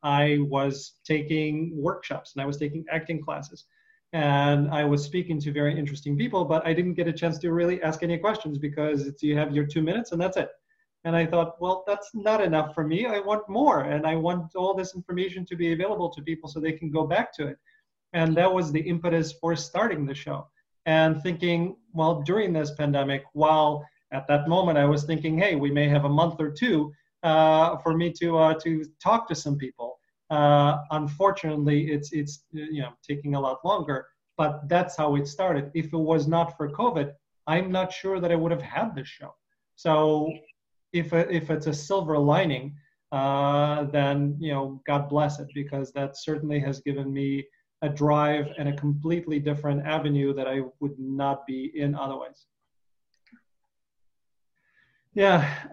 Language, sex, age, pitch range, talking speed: English, male, 30-49, 145-170 Hz, 185 wpm